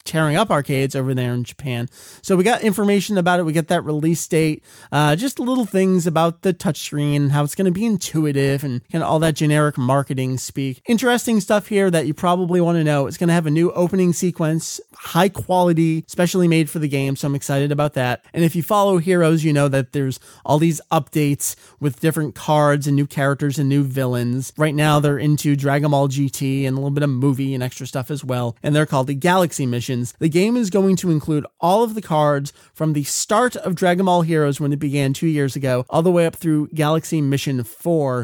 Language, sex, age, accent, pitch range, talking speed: English, male, 30-49, American, 130-165 Hz, 225 wpm